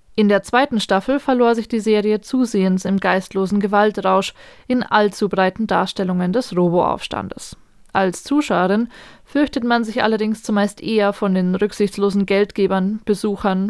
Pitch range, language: 195-230 Hz, German